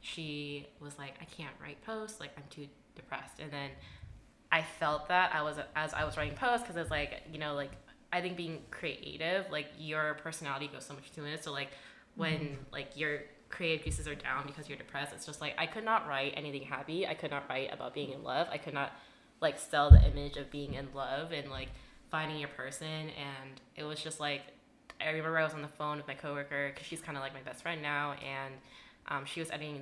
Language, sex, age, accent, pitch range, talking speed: English, female, 10-29, American, 140-165 Hz, 230 wpm